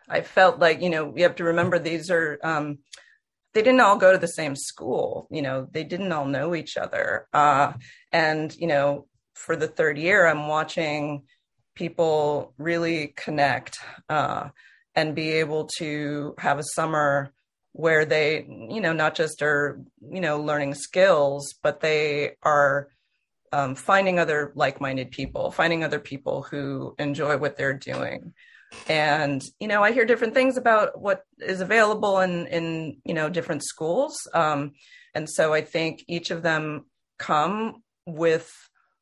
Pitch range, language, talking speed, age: 145-170 Hz, English, 160 wpm, 30-49